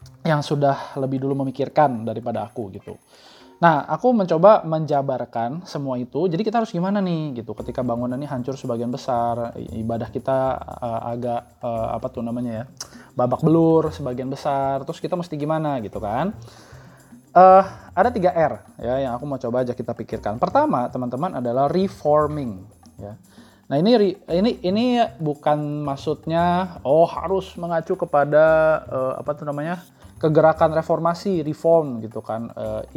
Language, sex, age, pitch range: Indonesian, male, 20-39, 120-165 Hz